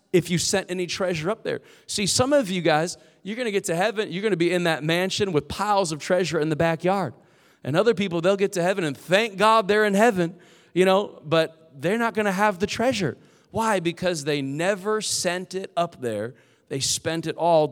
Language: English